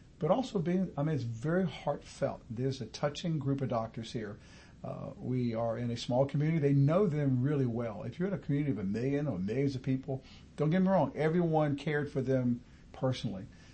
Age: 50-69